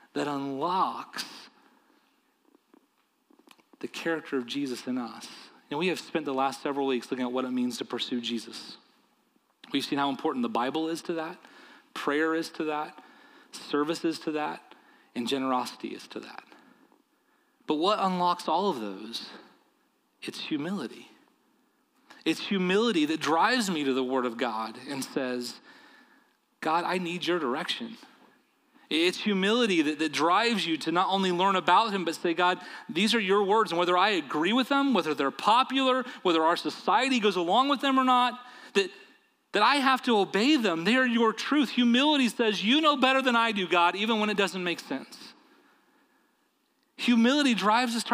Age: 30-49